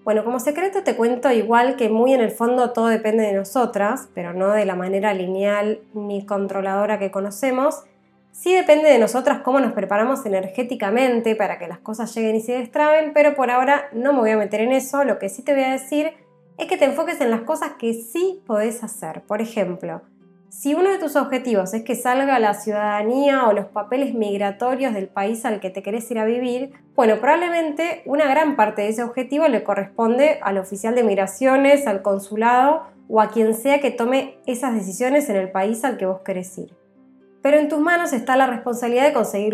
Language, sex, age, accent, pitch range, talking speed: Spanish, female, 20-39, Argentinian, 205-275 Hz, 205 wpm